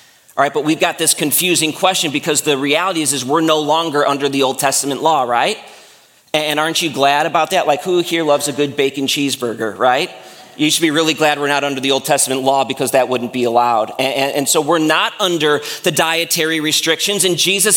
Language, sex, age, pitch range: English, male, 30-49, 140-200 Hz